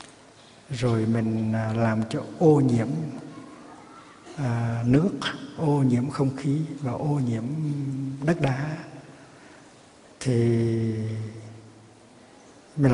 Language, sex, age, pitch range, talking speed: Vietnamese, male, 60-79, 120-145 Hz, 85 wpm